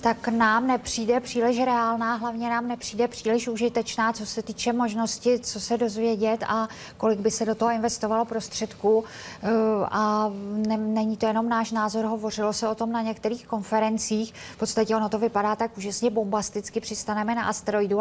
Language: Czech